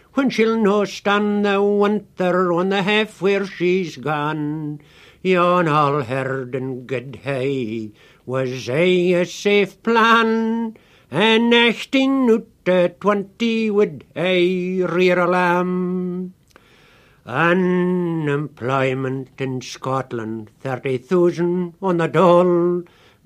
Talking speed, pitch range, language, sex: 105 wpm, 150-210 Hz, English, male